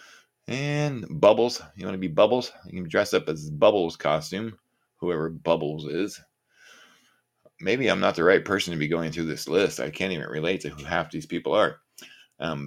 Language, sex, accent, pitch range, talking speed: English, male, American, 80-125 Hz, 190 wpm